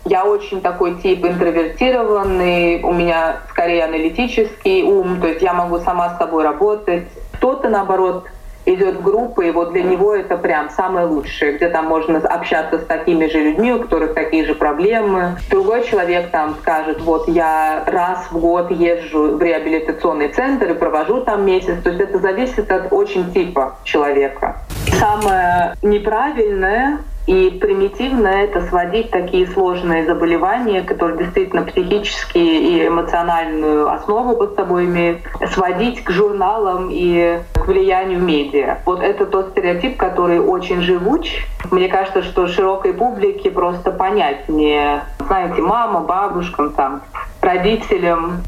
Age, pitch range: 20-39, 170-220 Hz